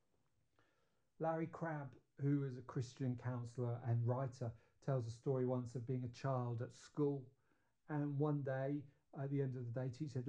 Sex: male